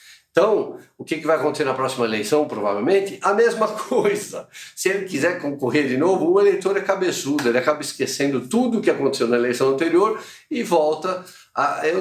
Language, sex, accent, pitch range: Portuguese, male, Brazilian, 125-185 Hz